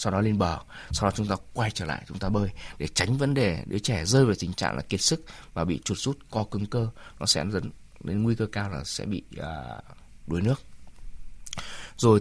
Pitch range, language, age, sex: 100-135 Hz, Vietnamese, 20-39, male